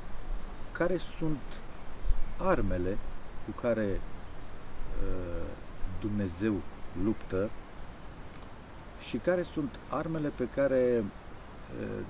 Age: 50-69